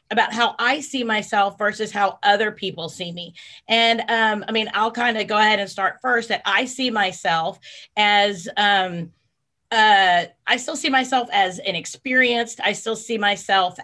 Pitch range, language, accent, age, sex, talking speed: 195-235 Hz, English, American, 30-49, female, 175 wpm